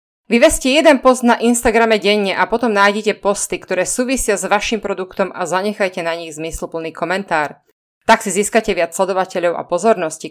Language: Slovak